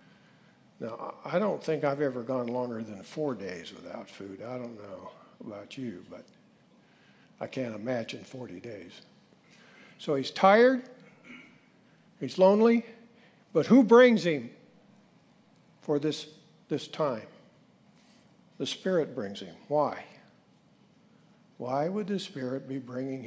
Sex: male